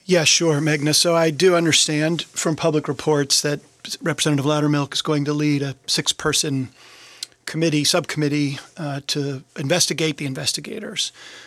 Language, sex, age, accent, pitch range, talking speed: English, male, 40-59, American, 145-165 Hz, 135 wpm